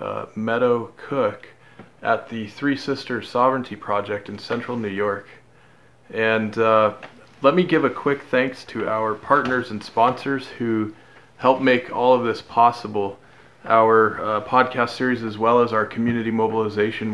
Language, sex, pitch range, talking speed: English, male, 110-130 Hz, 150 wpm